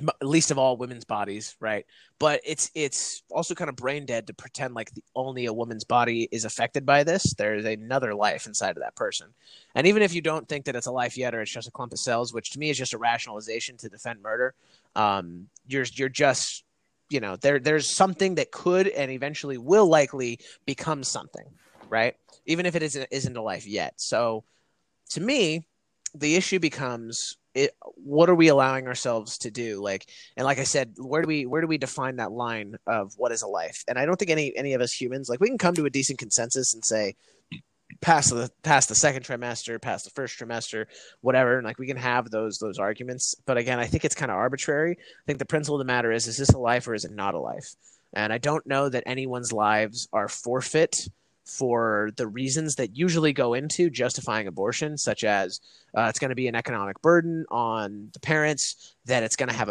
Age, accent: 30-49, American